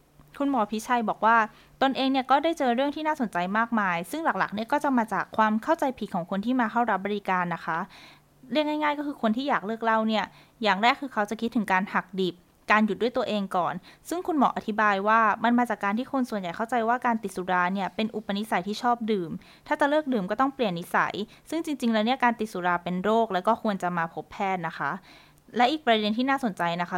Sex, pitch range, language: female, 185-245 Hz, Thai